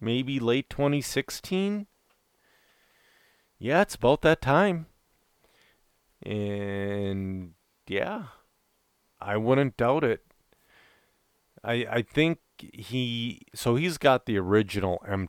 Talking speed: 100 wpm